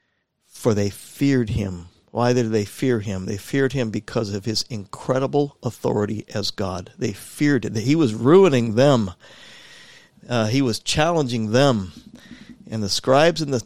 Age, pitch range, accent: 50-69, 105-130 Hz, American